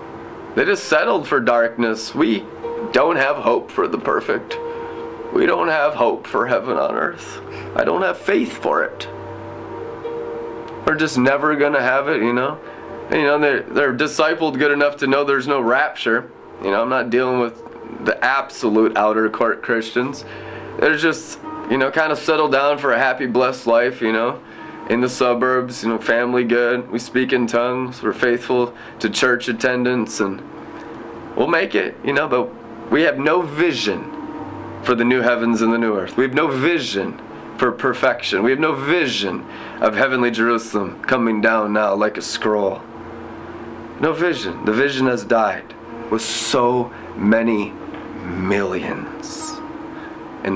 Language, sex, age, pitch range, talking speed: English, male, 20-39, 115-140 Hz, 165 wpm